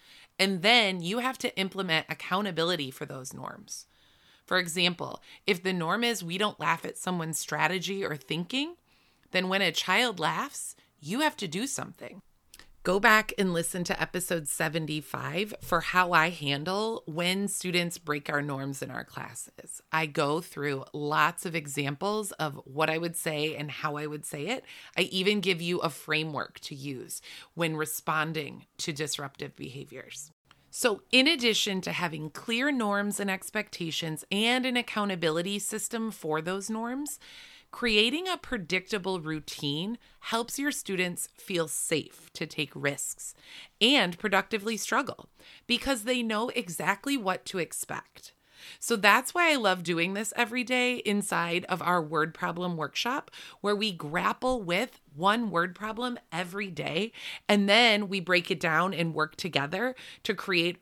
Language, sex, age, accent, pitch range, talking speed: English, female, 30-49, American, 160-215 Hz, 155 wpm